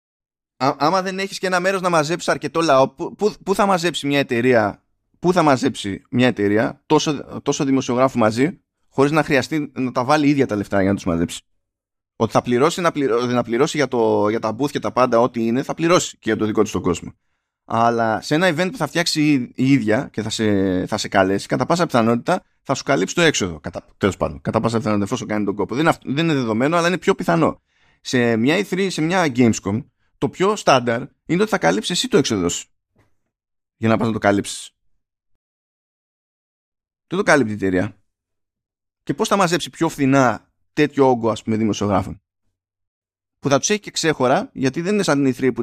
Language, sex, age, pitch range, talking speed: Greek, male, 20-39, 100-145 Hz, 205 wpm